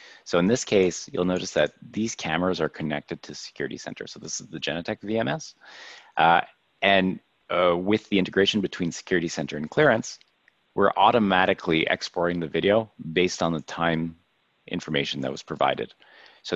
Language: English